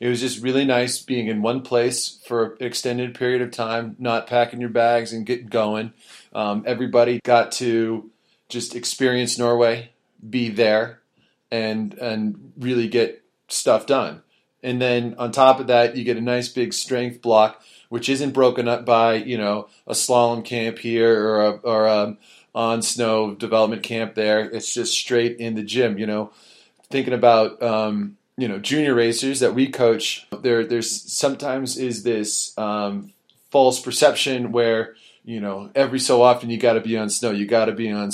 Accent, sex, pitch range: American, male, 110-125 Hz